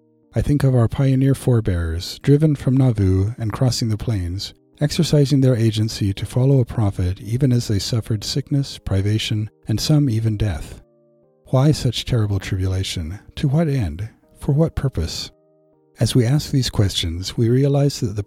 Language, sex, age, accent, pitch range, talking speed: English, male, 50-69, American, 95-130 Hz, 160 wpm